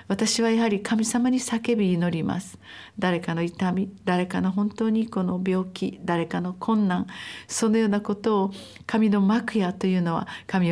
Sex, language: female, Japanese